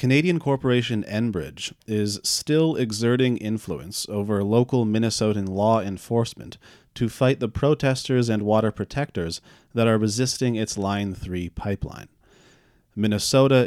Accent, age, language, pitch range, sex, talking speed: American, 30-49, English, 105-125 Hz, male, 120 wpm